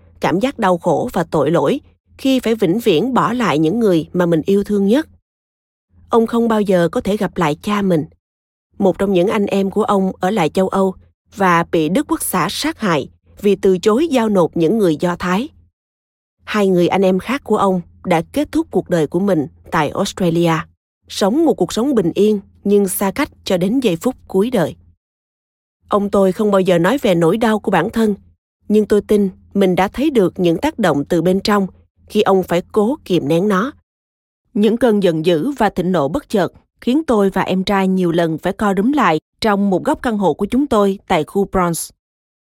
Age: 20-39